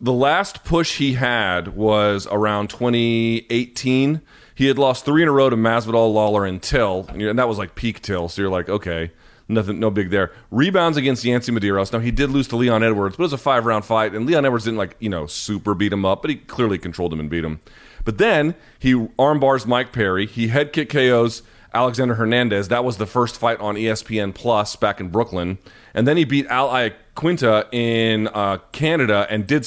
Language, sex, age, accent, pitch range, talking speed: English, male, 30-49, American, 95-120 Hz, 210 wpm